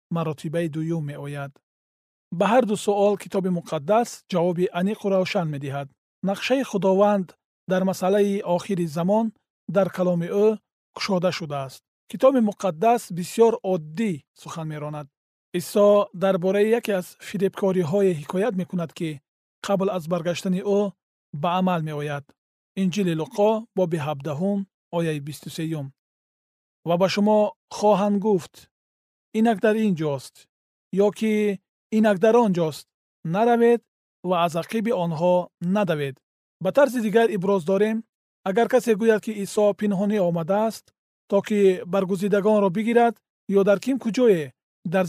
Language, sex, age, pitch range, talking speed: Persian, male, 40-59, 170-210 Hz, 135 wpm